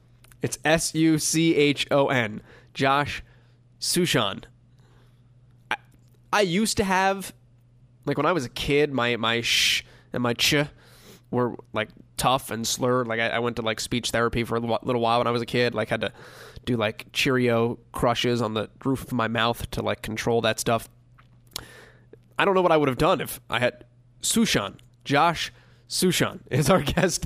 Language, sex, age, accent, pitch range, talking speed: English, male, 20-39, American, 120-145 Hz, 170 wpm